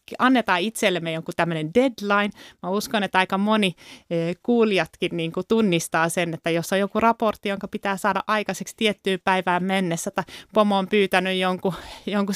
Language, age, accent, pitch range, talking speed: Finnish, 30-49, native, 170-215 Hz, 160 wpm